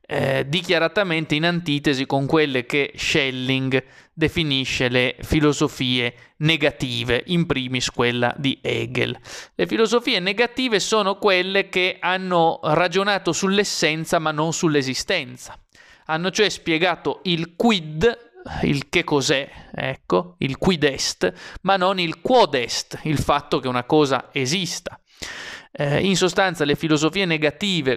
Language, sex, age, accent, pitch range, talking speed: Italian, male, 30-49, native, 140-180 Hz, 120 wpm